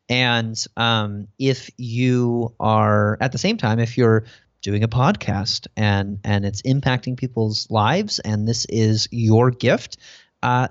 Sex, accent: male, American